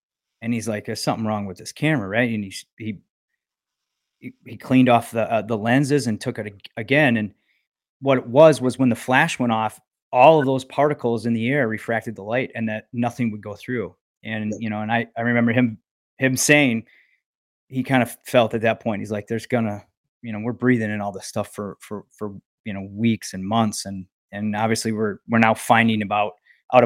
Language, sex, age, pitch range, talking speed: English, male, 30-49, 110-130 Hz, 215 wpm